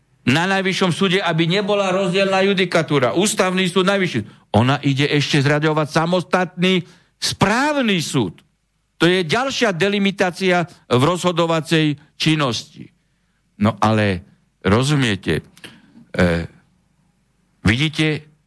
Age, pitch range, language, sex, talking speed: 60-79, 145-185 Hz, Slovak, male, 95 wpm